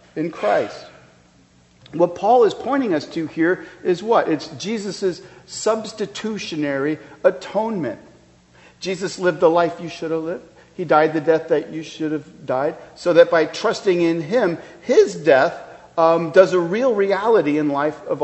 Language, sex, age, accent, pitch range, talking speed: English, male, 50-69, American, 120-175 Hz, 160 wpm